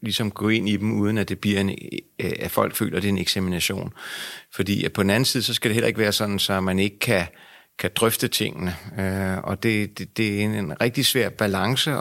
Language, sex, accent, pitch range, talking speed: Danish, male, native, 95-110 Hz, 225 wpm